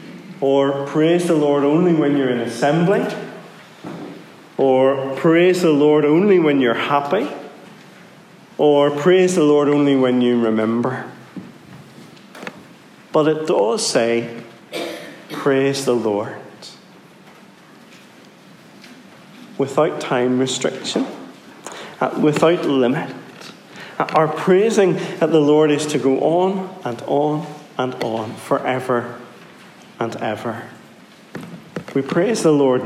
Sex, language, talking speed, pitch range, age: male, English, 110 wpm, 125-170 Hz, 40-59